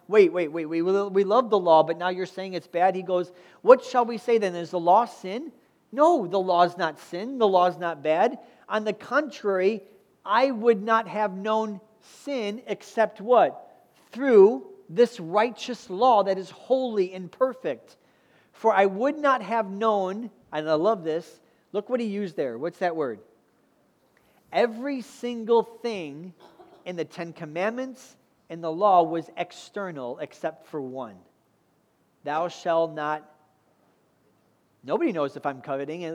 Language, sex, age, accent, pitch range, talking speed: English, male, 40-59, American, 165-215 Hz, 160 wpm